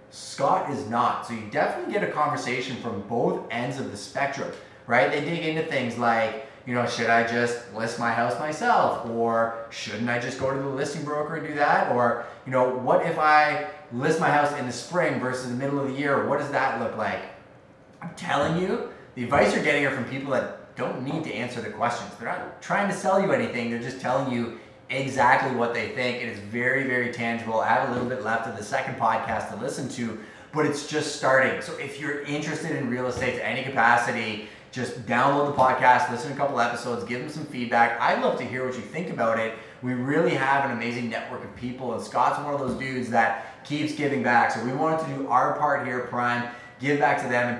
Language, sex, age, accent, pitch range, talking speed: English, male, 20-39, American, 115-145 Hz, 235 wpm